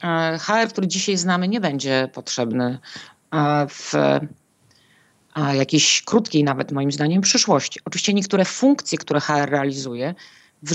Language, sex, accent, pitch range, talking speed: Polish, female, native, 140-175 Hz, 115 wpm